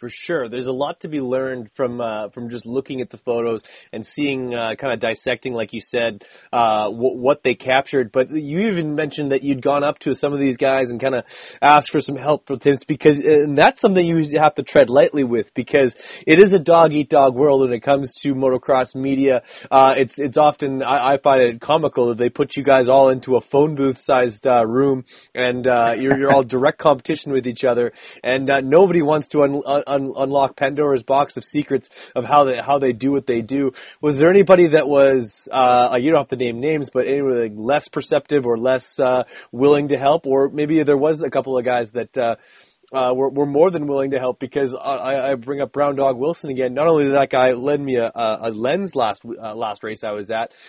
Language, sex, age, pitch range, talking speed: English, male, 30-49, 125-145 Hz, 230 wpm